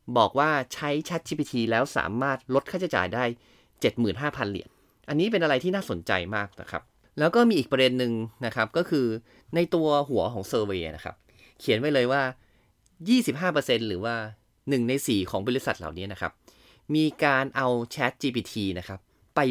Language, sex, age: Thai, male, 20-39